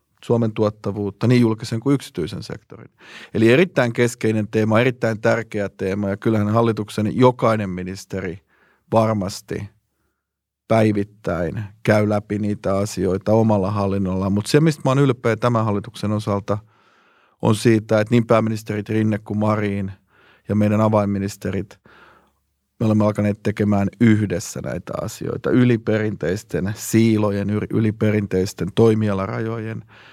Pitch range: 100-110 Hz